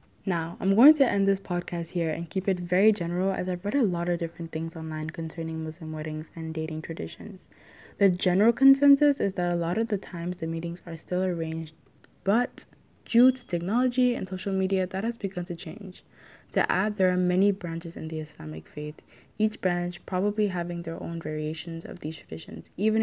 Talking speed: 200 wpm